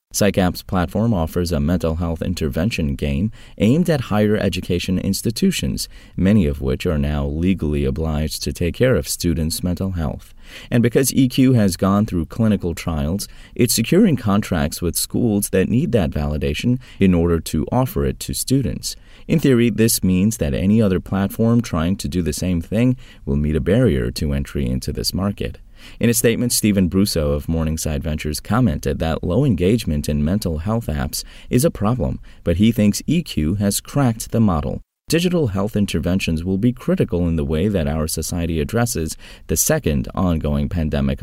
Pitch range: 75-110 Hz